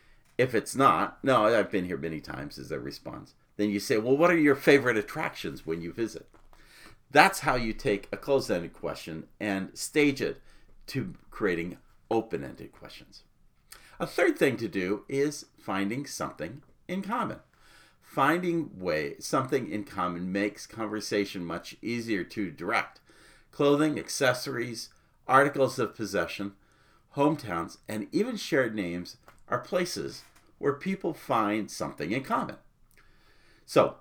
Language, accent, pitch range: English, American, 105-160 Hz